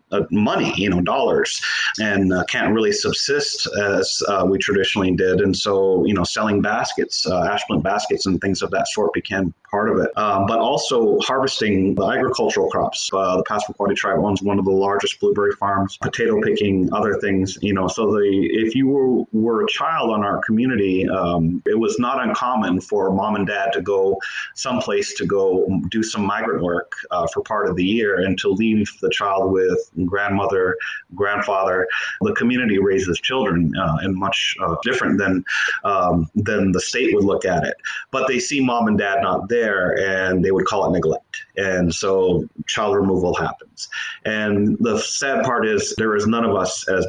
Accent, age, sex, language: American, 30-49, male, English